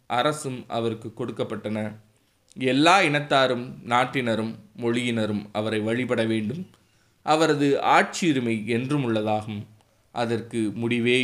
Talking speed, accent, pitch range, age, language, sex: 80 wpm, native, 110-135 Hz, 20-39, Tamil, male